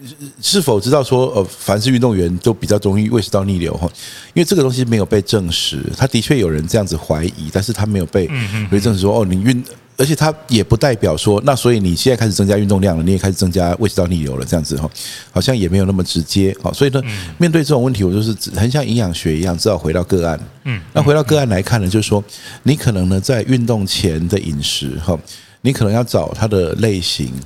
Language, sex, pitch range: Chinese, male, 90-120 Hz